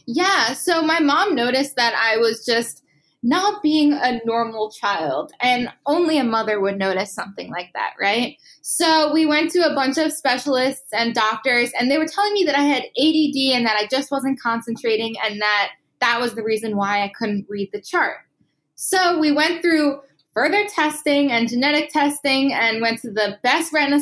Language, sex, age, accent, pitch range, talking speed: English, female, 10-29, American, 230-300 Hz, 190 wpm